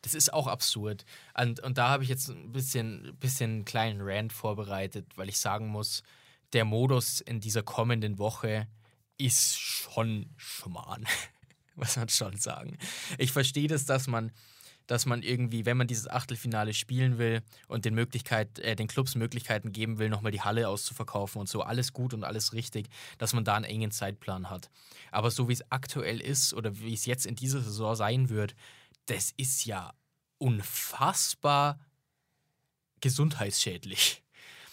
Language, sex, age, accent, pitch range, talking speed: German, male, 20-39, German, 110-135 Hz, 160 wpm